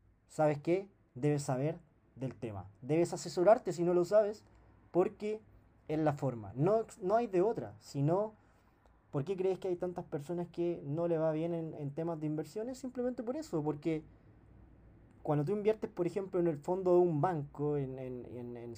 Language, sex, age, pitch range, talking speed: Spanish, male, 20-39, 135-190 Hz, 185 wpm